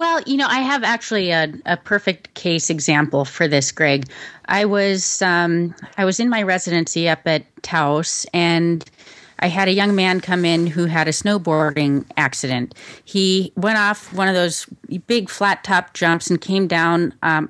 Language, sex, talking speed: English, female, 175 wpm